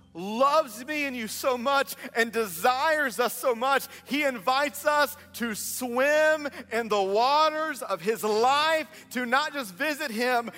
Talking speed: 155 wpm